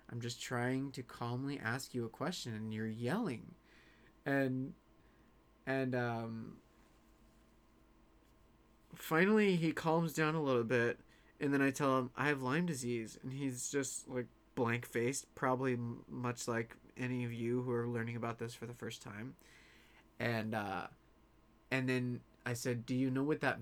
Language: English